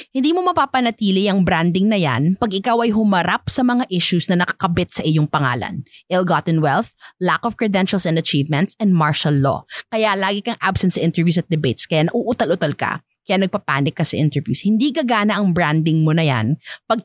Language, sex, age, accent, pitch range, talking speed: English, female, 20-39, Filipino, 160-230 Hz, 185 wpm